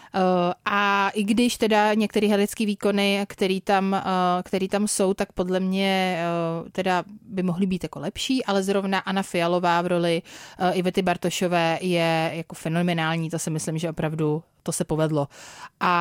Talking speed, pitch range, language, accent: 145 wpm, 175-200 Hz, Czech, native